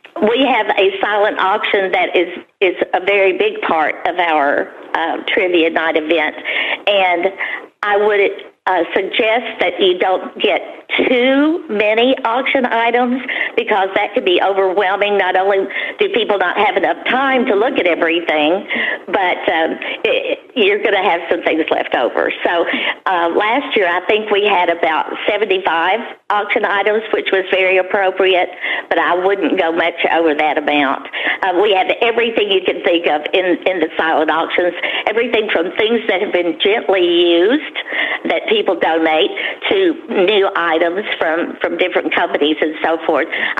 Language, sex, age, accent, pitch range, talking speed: English, female, 50-69, American, 175-255 Hz, 160 wpm